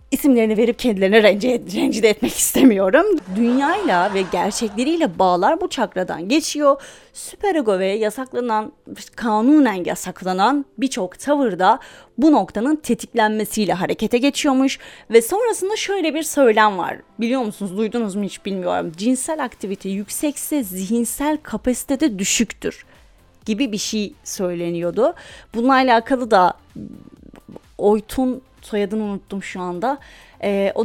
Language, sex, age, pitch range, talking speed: Turkish, female, 30-49, 200-275 Hz, 115 wpm